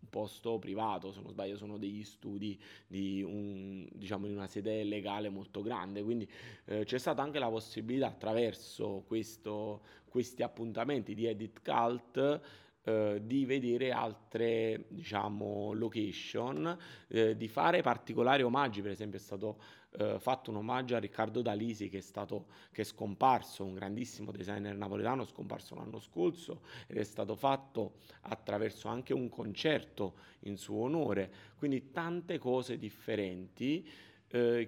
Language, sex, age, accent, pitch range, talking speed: Italian, male, 30-49, native, 105-120 Hz, 140 wpm